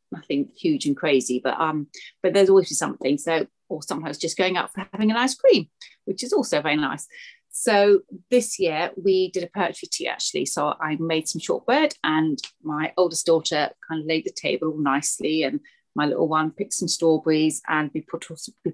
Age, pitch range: 30-49, 160-260 Hz